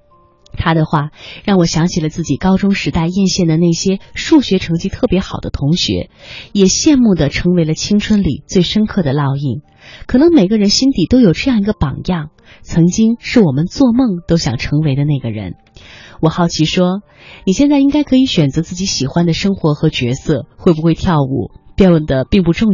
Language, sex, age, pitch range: Chinese, female, 20-39, 155-215 Hz